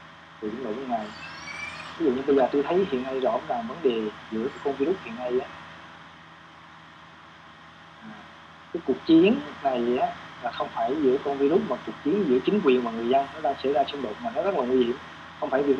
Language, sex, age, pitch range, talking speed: Vietnamese, male, 20-39, 80-135 Hz, 210 wpm